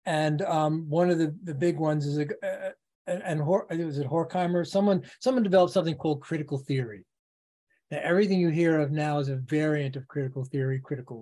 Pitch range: 135-165 Hz